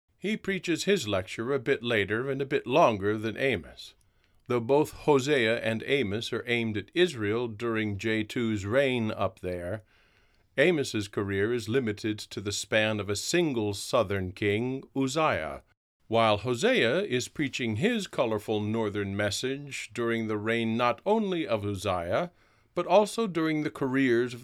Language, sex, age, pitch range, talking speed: English, male, 50-69, 105-140 Hz, 150 wpm